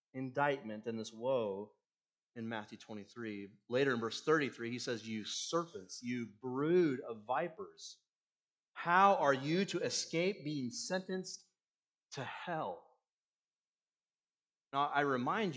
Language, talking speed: English, 120 wpm